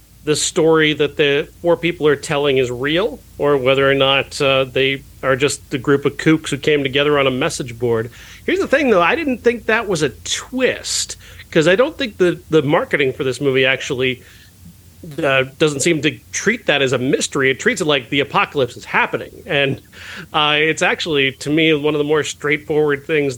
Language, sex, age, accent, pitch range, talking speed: English, male, 40-59, American, 130-155 Hz, 205 wpm